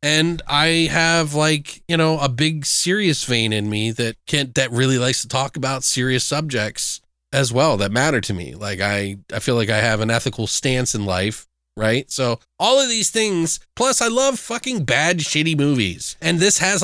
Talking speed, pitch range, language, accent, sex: 200 wpm, 120-170 Hz, English, American, male